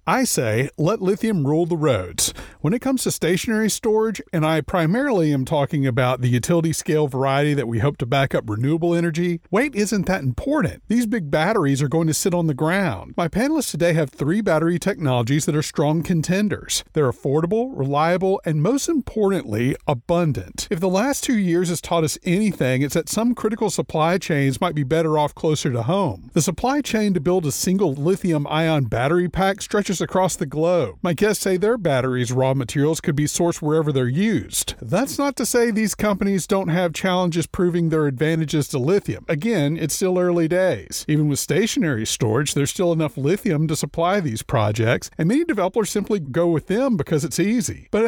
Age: 40-59